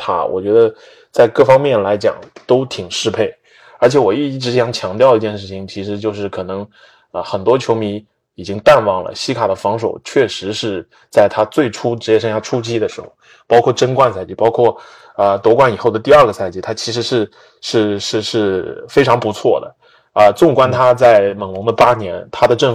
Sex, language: male, Chinese